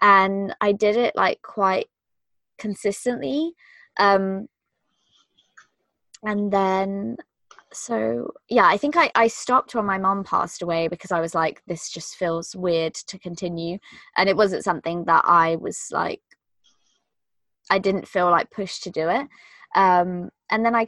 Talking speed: 150 wpm